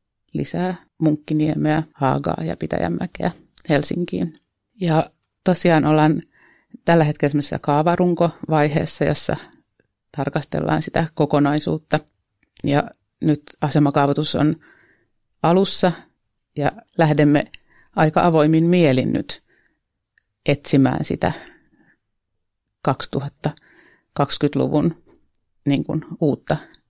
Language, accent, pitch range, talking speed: Finnish, native, 145-170 Hz, 75 wpm